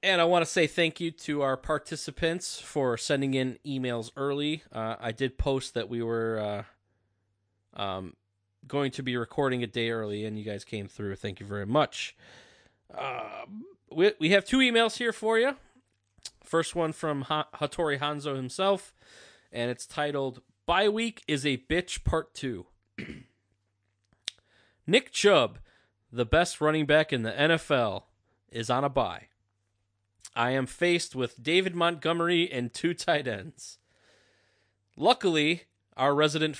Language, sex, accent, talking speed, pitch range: English, male, American, 150 wpm, 115-160 Hz